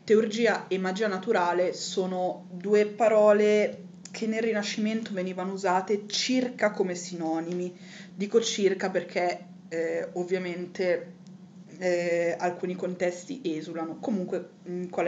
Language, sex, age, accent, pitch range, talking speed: Italian, female, 20-39, native, 175-200 Hz, 105 wpm